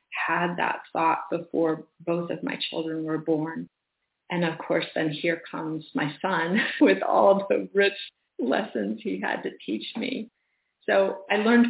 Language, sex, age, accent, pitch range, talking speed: English, female, 40-59, American, 165-185 Hz, 165 wpm